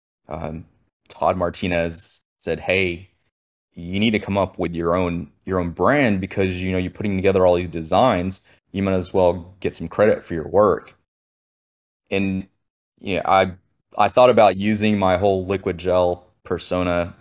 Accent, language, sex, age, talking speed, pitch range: American, English, male, 20-39, 170 wpm, 85-95 Hz